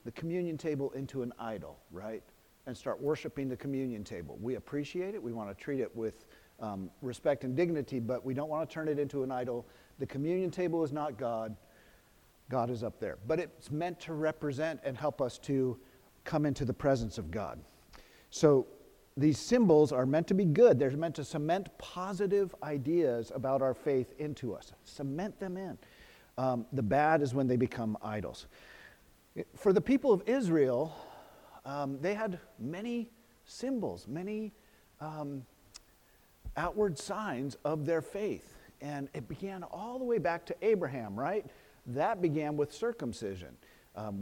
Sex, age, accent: male, 50-69, American